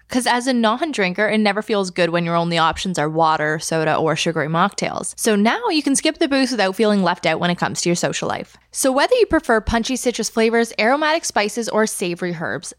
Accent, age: American, 20-39